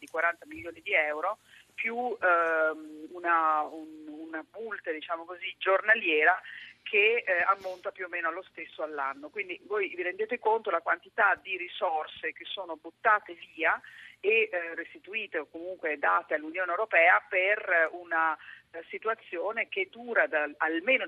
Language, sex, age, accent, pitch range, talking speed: Italian, female, 40-59, native, 160-220 Hz, 135 wpm